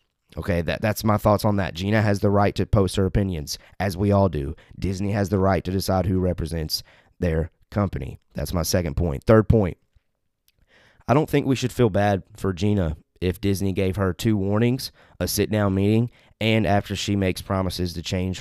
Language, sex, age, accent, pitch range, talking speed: English, male, 20-39, American, 90-110 Hz, 195 wpm